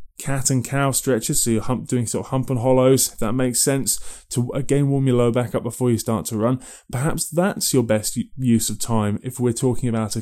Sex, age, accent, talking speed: male, 20-39, British, 235 wpm